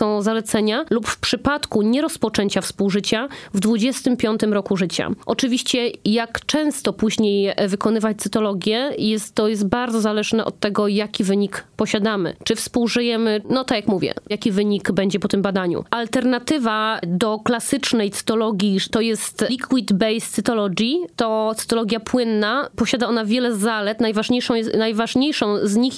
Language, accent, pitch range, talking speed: Polish, native, 215-245 Hz, 135 wpm